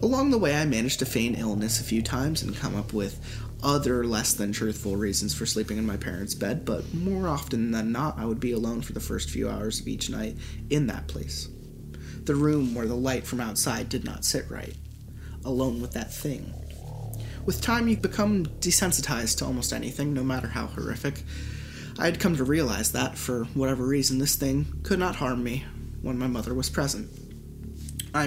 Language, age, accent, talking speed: English, 30-49, American, 195 wpm